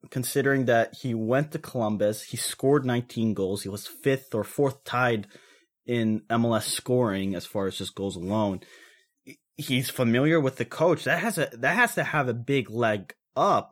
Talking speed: 180 wpm